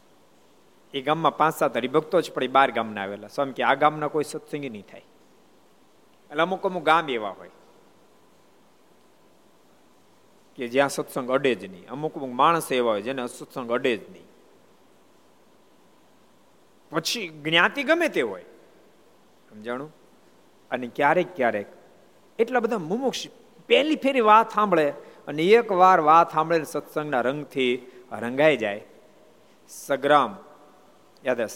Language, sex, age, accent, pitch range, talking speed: Gujarati, male, 50-69, native, 120-170 Hz, 105 wpm